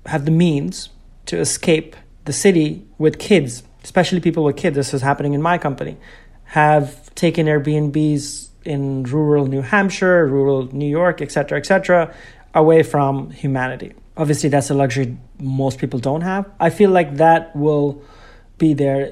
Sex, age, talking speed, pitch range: male, 30-49, 165 wpm, 135-155 Hz